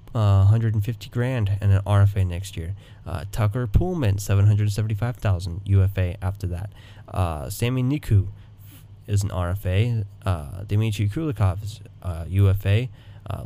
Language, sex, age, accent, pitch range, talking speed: English, male, 20-39, American, 100-115 Hz, 145 wpm